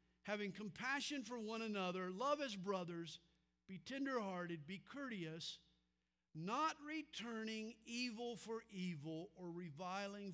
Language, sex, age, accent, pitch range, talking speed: English, male, 50-69, American, 140-225 Hz, 110 wpm